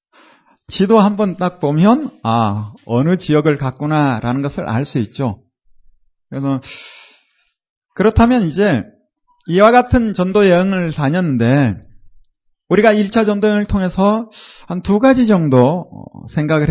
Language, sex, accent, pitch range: Korean, male, native, 140-230 Hz